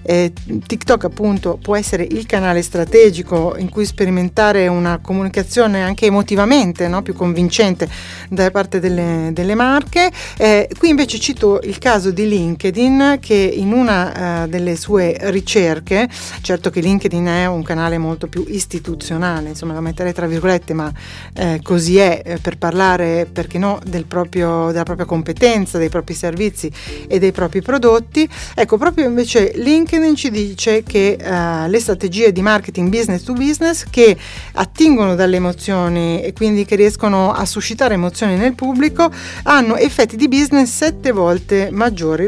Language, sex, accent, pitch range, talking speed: Italian, female, native, 170-215 Hz, 145 wpm